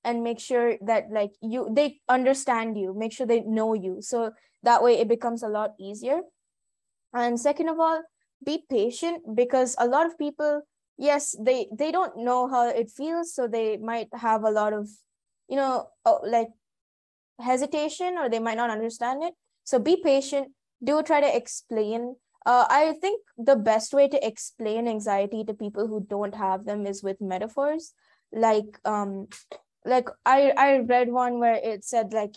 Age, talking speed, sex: 20-39, 175 wpm, female